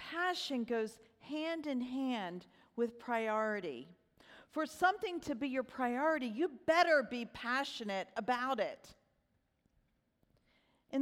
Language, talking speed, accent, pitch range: English, 100 wpm, American, 215-280 Hz